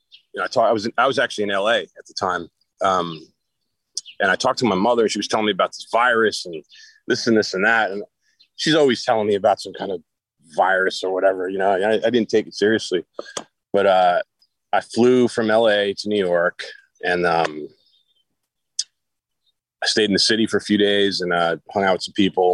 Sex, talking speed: male, 220 wpm